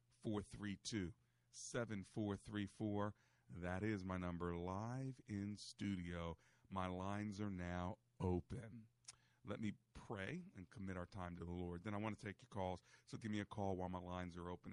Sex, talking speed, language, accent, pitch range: male, 165 wpm, English, American, 90-120 Hz